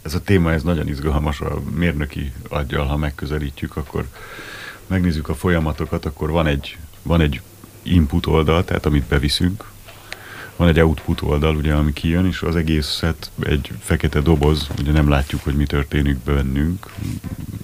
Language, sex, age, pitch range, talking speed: Hungarian, male, 30-49, 70-85 Hz, 145 wpm